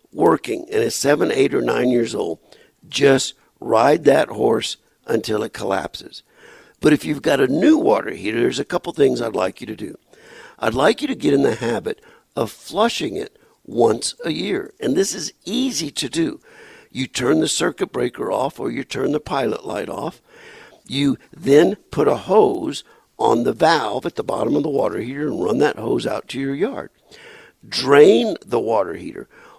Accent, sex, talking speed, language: American, male, 190 wpm, English